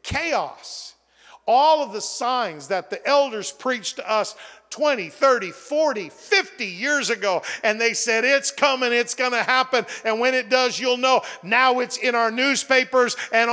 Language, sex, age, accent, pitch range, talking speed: English, male, 50-69, American, 180-255 Hz, 165 wpm